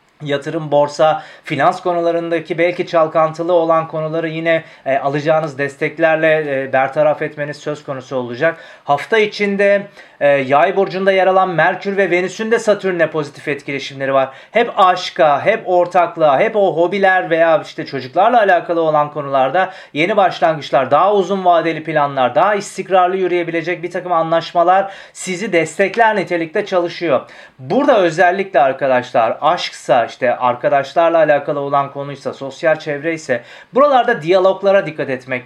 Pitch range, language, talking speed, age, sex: 155-190 Hz, Turkish, 130 wpm, 40-59, male